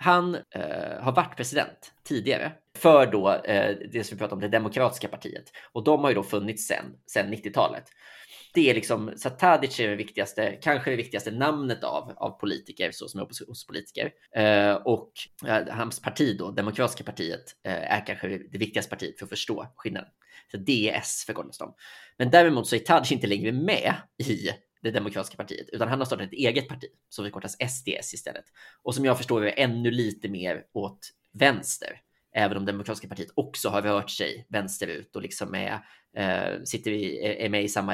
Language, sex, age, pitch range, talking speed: Swedish, male, 20-39, 100-130 Hz, 180 wpm